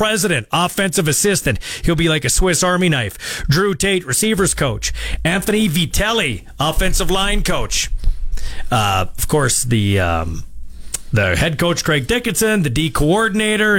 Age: 40-59